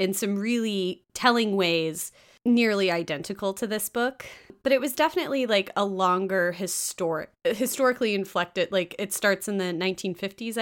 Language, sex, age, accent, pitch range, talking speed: English, female, 20-39, American, 180-240 Hz, 145 wpm